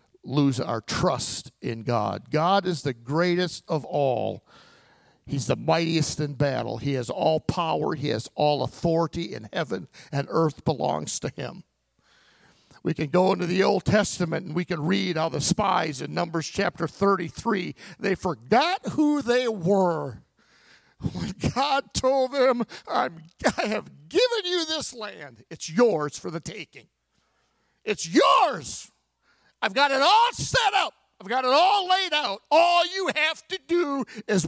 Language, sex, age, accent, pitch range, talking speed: English, male, 50-69, American, 150-235 Hz, 155 wpm